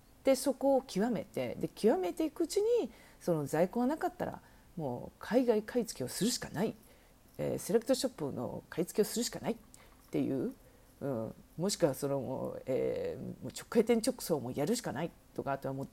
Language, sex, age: Japanese, female, 40-59